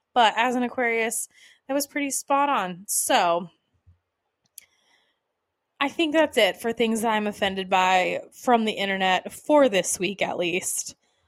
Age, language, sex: 20-39, English, female